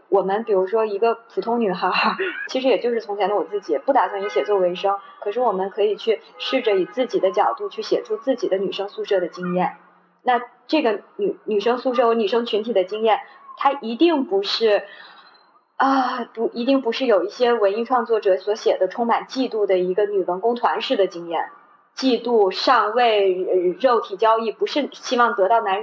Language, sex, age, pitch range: English, female, 20-39, 195-255 Hz